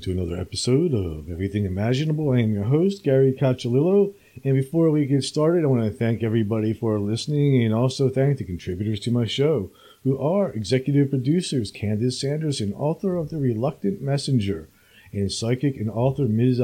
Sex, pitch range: male, 105-135 Hz